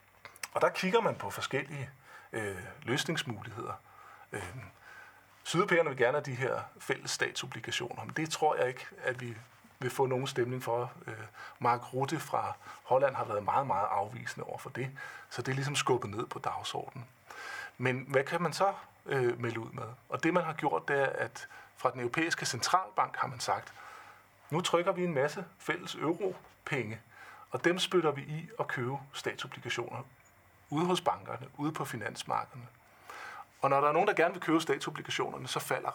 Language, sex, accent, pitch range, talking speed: Danish, male, native, 120-175 Hz, 180 wpm